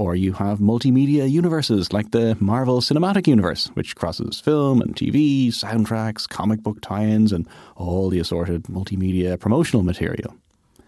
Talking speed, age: 145 wpm, 30-49